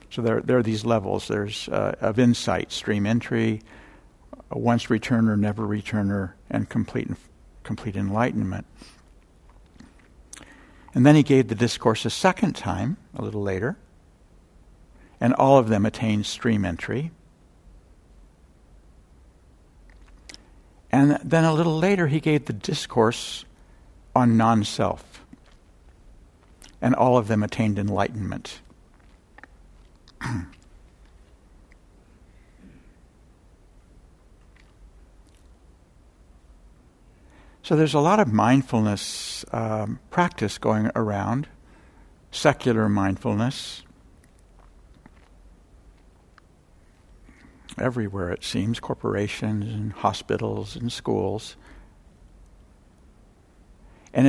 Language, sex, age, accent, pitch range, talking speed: English, male, 60-79, American, 85-120 Hz, 85 wpm